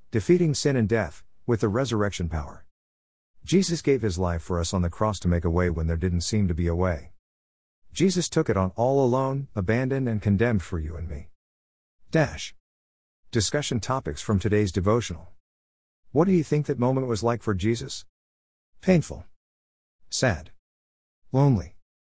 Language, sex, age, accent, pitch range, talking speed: English, male, 50-69, American, 80-115 Hz, 165 wpm